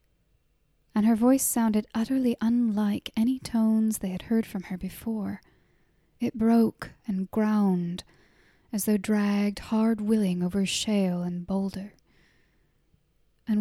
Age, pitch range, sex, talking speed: 10-29, 200-230 Hz, female, 120 wpm